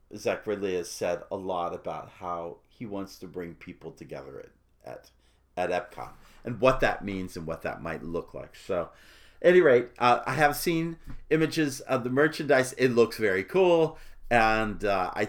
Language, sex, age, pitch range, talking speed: English, male, 50-69, 100-150 Hz, 185 wpm